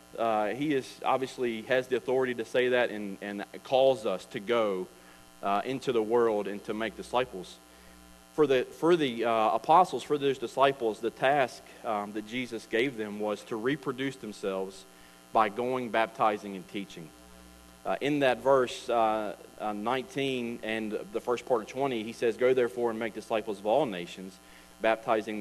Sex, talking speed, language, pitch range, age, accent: male, 170 wpm, English, 95-120 Hz, 40-59, American